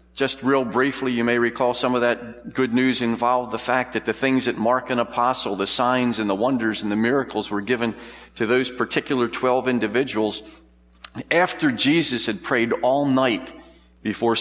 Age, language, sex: 50-69, English, male